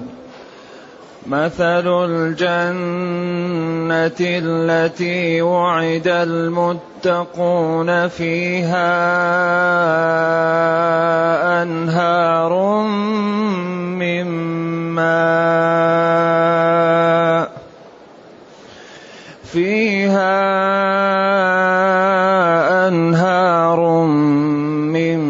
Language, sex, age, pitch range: Arabic, male, 30-49, 145-175 Hz